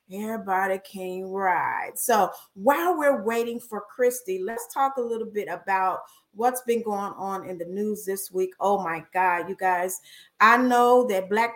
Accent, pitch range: American, 200-260 Hz